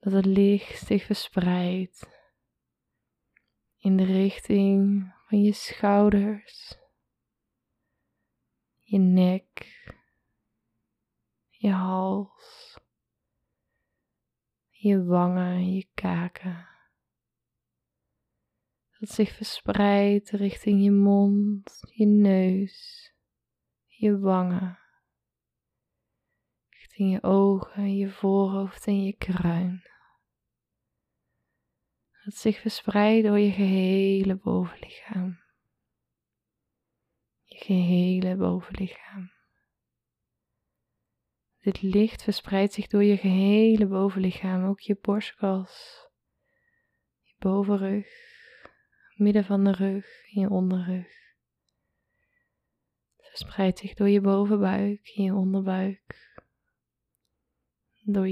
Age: 20-39